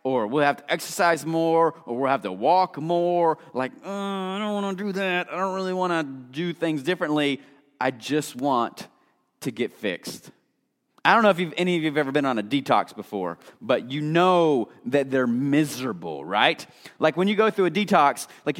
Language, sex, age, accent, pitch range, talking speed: English, male, 30-49, American, 150-200 Hz, 200 wpm